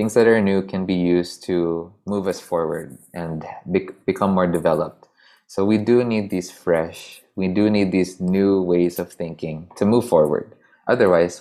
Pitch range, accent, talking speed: 85-105 Hz, Filipino, 180 wpm